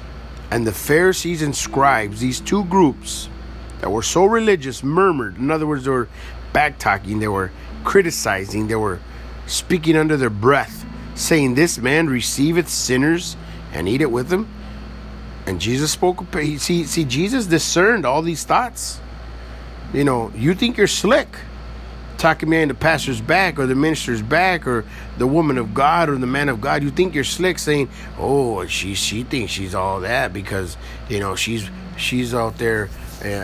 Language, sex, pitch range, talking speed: English, male, 100-155 Hz, 170 wpm